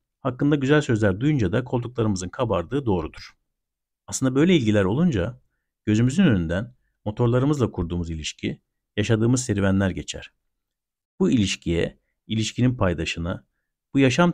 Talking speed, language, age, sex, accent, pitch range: 110 wpm, Turkish, 50-69, male, native, 95-130 Hz